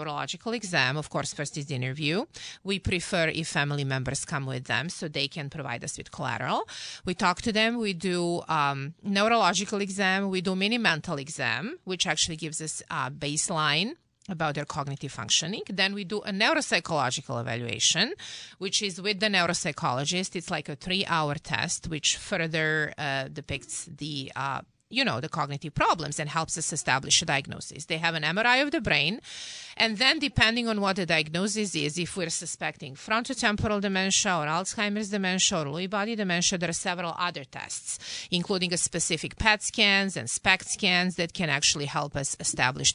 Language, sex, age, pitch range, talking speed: English, female, 30-49, 150-195 Hz, 175 wpm